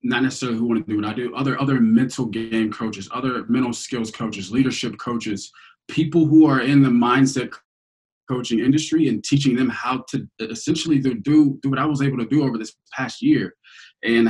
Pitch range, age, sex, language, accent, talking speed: 120-150 Hz, 20-39, male, English, American, 195 wpm